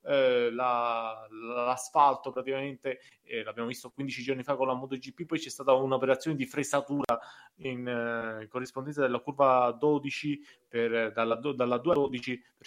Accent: native